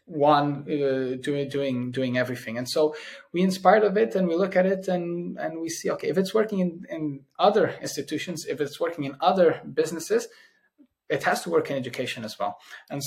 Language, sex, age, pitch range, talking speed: English, male, 20-39, 125-155 Hz, 200 wpm